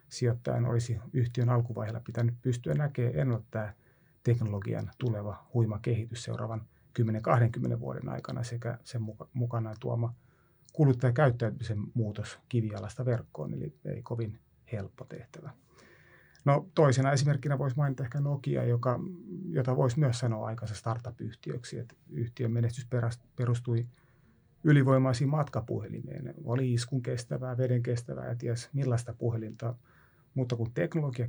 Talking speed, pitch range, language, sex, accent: 120 wpm, 115-130 Hz, Finnish, male, native